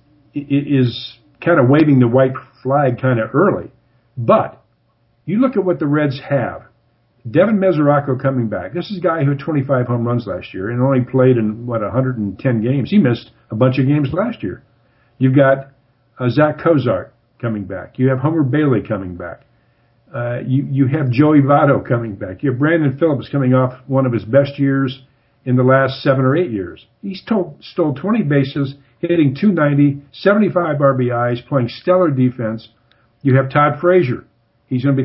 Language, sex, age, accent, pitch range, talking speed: English, male, 50-69, American, 120-145 Hz, 180 wpm